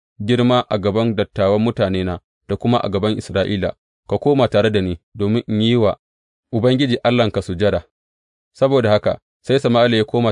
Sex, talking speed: male, 135 wpm